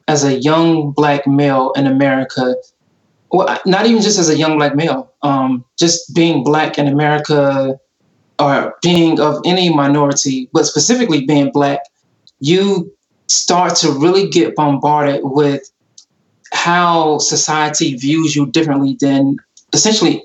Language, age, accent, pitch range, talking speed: English, 20-39, American, 140-160 Hz, 135 wpm